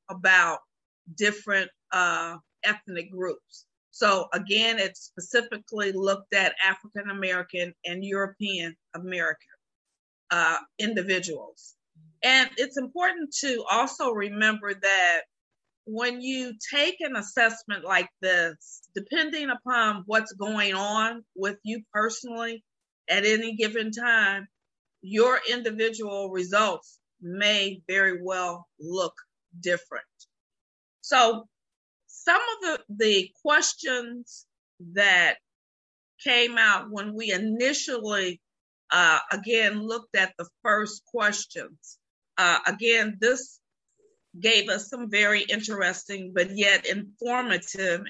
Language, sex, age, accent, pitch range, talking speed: English, female, 50-69, American, 190-240 Hz, 100 wpm